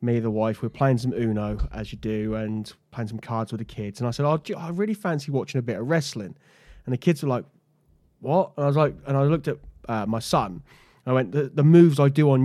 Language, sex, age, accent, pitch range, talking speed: English, male, 20-39, British, 115-145 Hz, 285 wpm